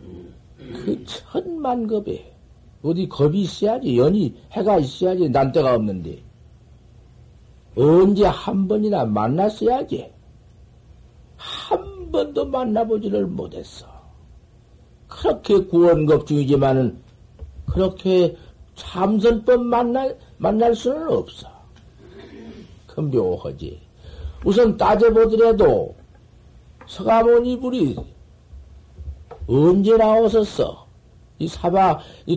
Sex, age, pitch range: male, 60-79, 140-220 Hz